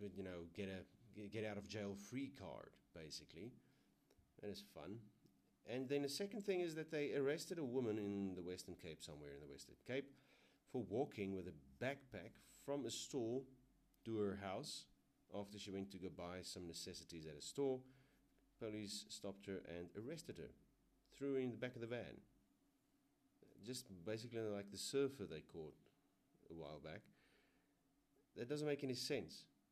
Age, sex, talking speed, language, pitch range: 40-59, male, 175 wpm, English, 90-130 Hz